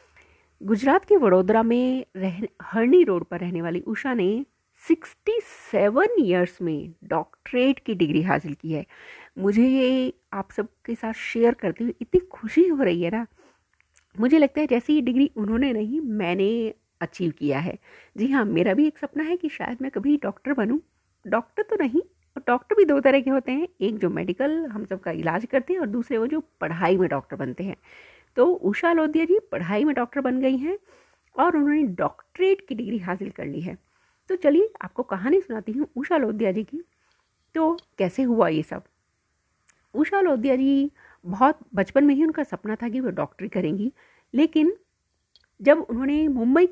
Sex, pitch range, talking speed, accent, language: female, 195-310 Hz, 180 wpm, native, Hindi